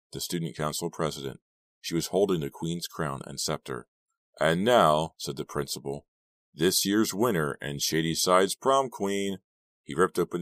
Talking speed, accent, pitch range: 160 wpm, American, 75-85 Hz